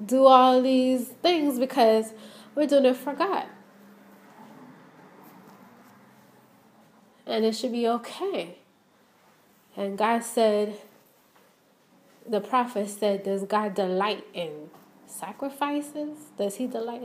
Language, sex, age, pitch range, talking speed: English, female, 20-39, 205-255 Hz, 100 wpm